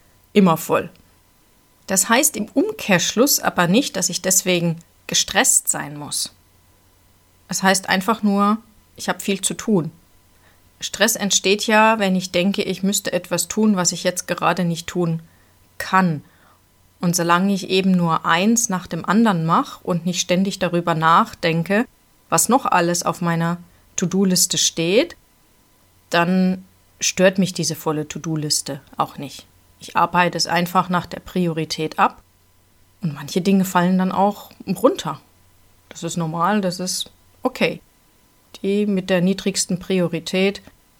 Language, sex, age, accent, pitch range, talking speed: German, female, 30-49, German, 160-195 Hz, 140 wpm